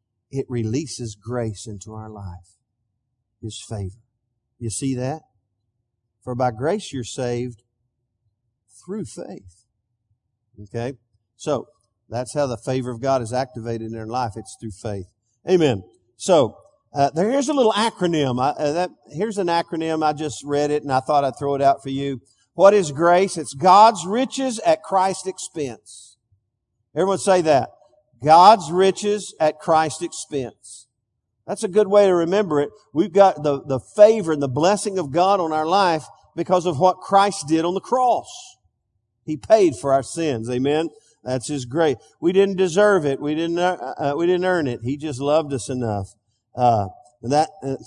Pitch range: 120-175 Hz